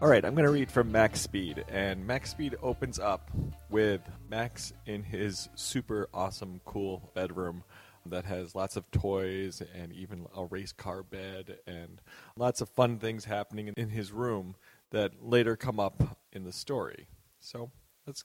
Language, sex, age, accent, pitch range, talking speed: English, male, 40-59, American, 100-145 Hz, 170 wpm